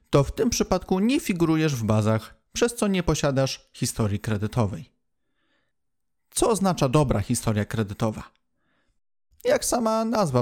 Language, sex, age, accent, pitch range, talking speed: Polish, male, 30-49, native, 115-160 Hz, 125 wpm